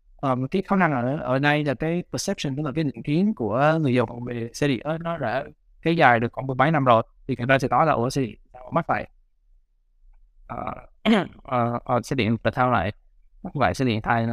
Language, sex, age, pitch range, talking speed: Vietnamese, male, 20-39, 115-145 Hz, 235 wpm